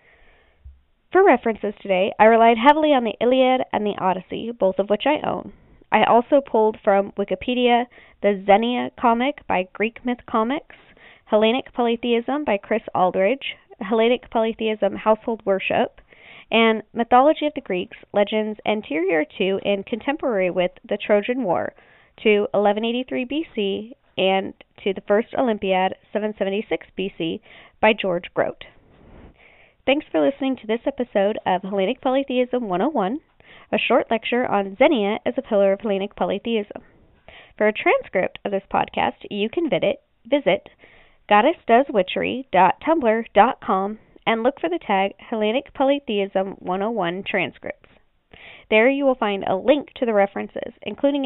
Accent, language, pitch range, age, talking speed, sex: American, English, 200-255 Hz, 20-39, 135 wpm, female